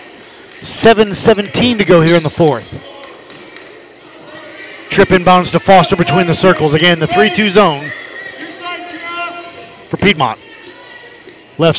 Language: English